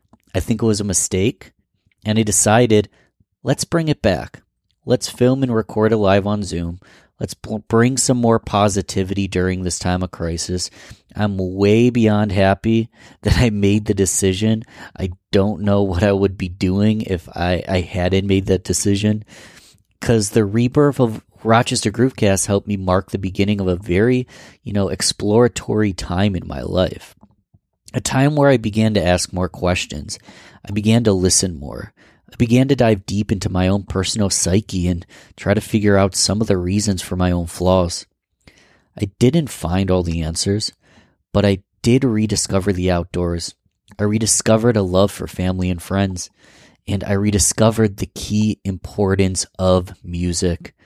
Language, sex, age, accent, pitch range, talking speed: English, male, 30-49, American, 90-110 Hz, 170 wpm